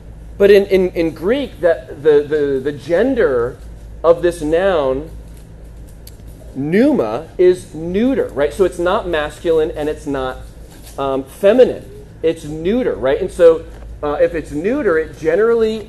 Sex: male